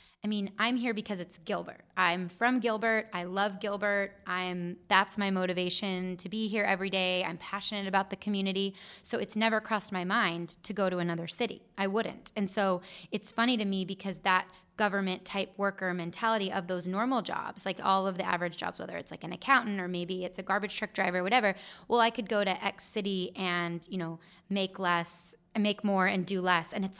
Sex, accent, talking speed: female, American, 210 wpm